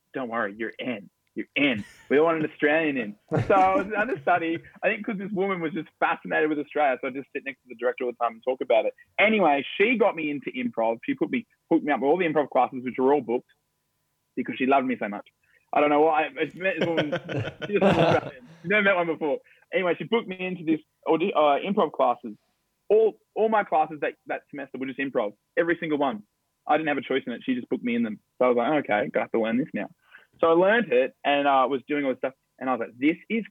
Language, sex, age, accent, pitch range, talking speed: English, male, 20-39, Australian, 125-175 Hz, 265 wpm